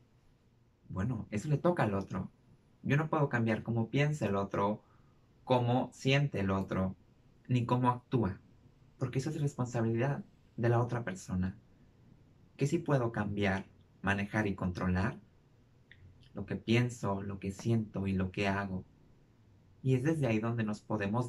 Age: 30-49